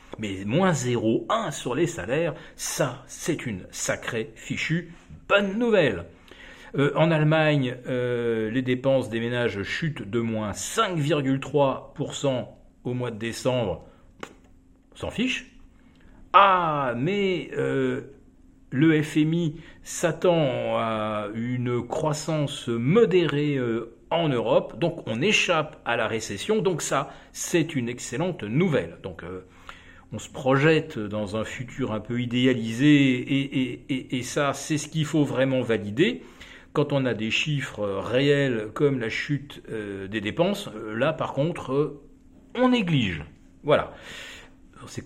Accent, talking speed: French, 125 wpm